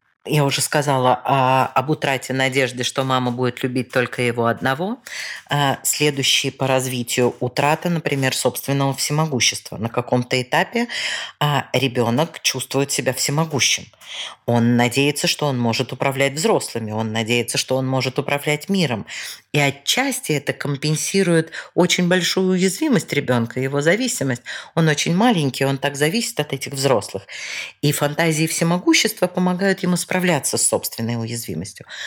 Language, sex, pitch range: Russian, female, 125-160 Hz